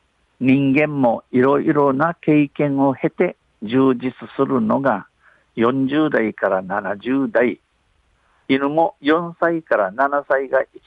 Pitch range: 110-145 Hz